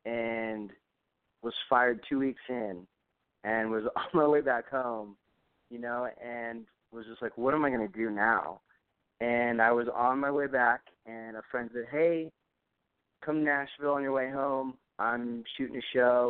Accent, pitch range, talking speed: American, 115-130 Hz, 175 wpm